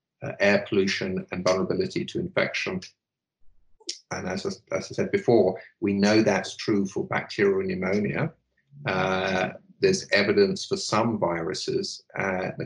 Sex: male